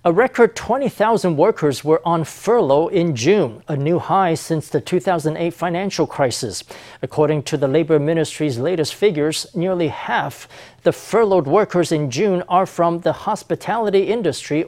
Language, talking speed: English, 145 wpm